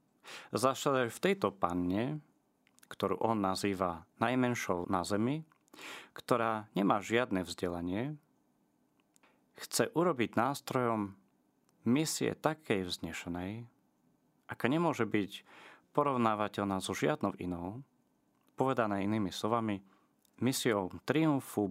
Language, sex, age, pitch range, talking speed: Slovak, male, 30-49, 95-120 Hz, 90 wpm